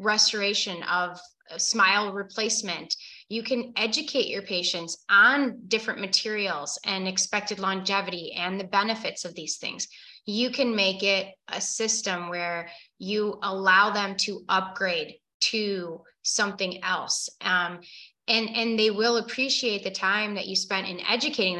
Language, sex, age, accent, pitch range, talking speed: English, female, 20-39, American, 190-235 Hz, 135 wpm